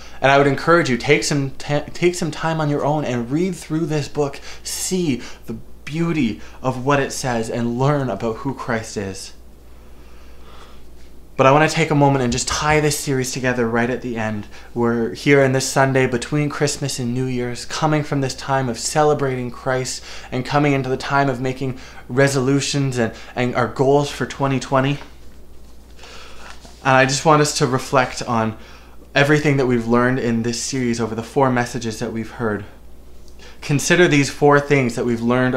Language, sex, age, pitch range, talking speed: English, male, 20-39, 115-140 Hz, 180 wpm